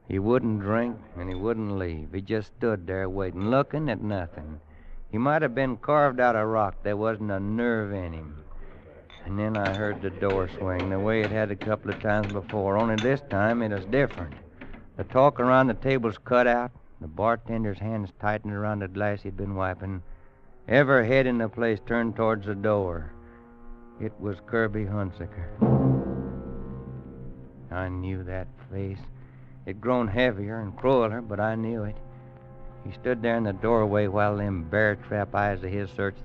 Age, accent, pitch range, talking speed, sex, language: 60-79, American, 90-115 Hz, 175 wpm, male, English